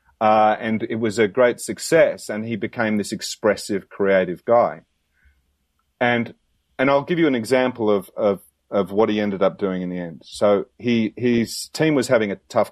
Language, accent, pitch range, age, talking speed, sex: English, Australian, 95-120 Hz, 40-59, 190 wpm, male